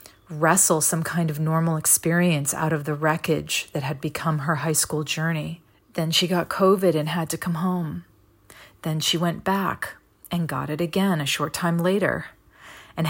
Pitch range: 155-175 Hz